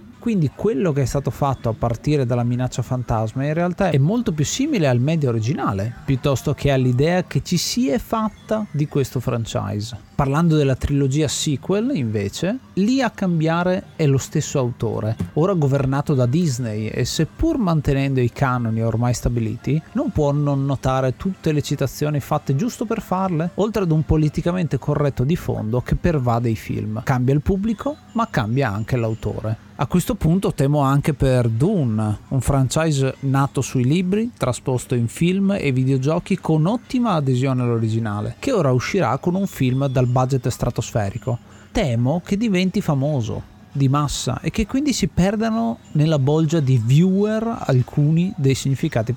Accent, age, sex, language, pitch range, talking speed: native, 30-49, male, Italian, 120-170 Hz, 160 wpm